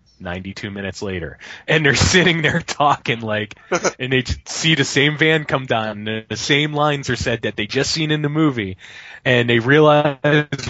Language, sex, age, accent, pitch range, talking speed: English, male, 20-39, American, 125-160 Hz, 180 wpm